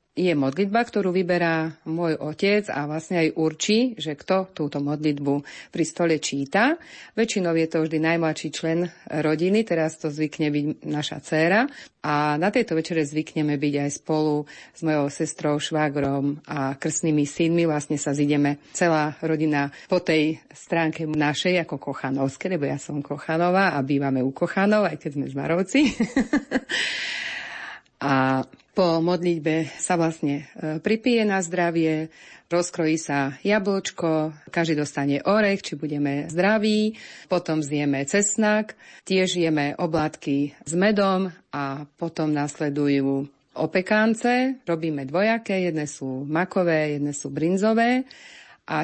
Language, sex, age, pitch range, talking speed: Slovak, female, 40-59, 145-180 Hz, 130 wpm